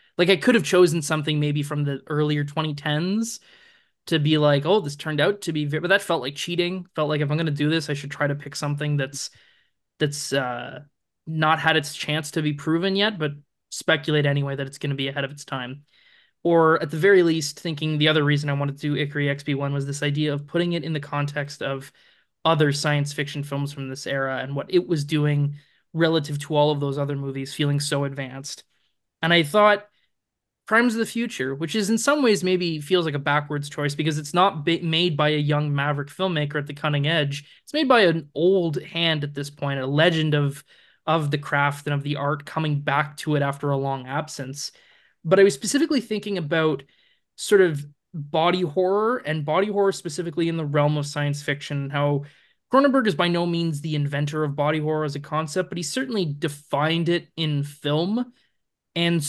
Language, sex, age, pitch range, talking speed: English, male, 20-39, 145-170 Hz, 210 wpm